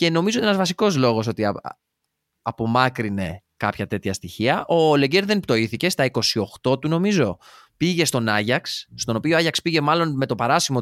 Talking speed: 165 wpm